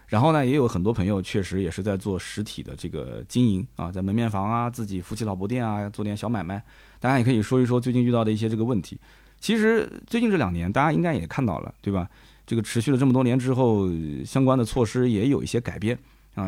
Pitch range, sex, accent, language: 95-140 Hz, male, native, Chinese